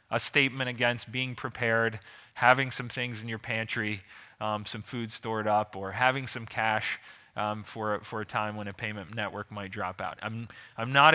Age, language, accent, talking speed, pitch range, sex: 30-49, Italian, American, 190 wpm, 110-135 Hz, male